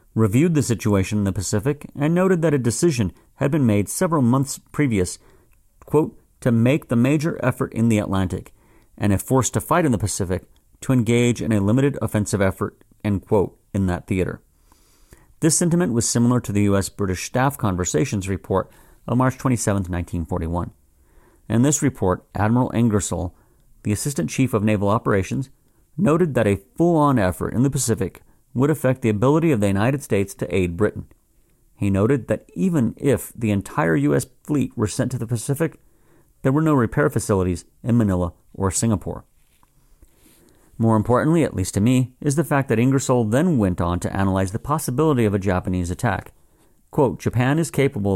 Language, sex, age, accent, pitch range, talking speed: English, male, 40-59, American, 100-130 Hz, 175 wpm